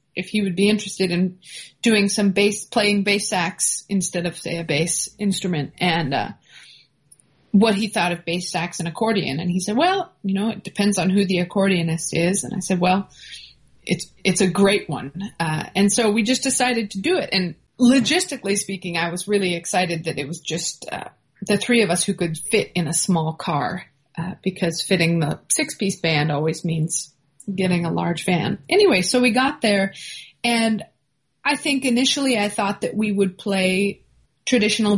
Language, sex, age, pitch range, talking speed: English, female, 30-49, 175-220 Hz, 190 wpm